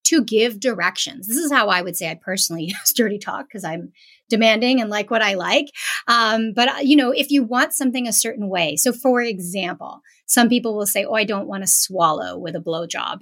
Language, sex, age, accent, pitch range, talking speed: English, female, 30-49, American, 200-275 Hz, 220 wpm